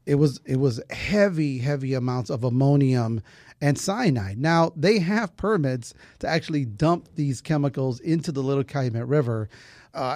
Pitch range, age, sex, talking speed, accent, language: 125-150 Hz, 30-49, male, 155 wpm, American, English